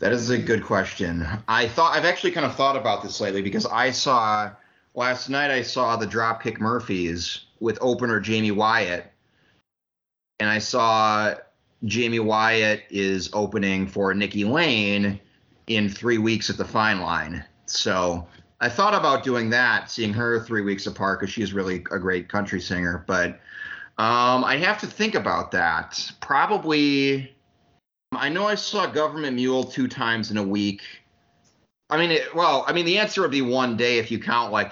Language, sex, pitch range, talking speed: English, male, 100-120 Hz, 175 wpm